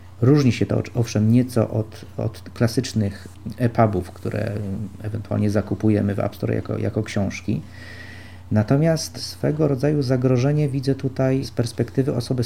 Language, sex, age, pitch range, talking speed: Polish, male, 40-59, 100-120 Hz, 130 wpm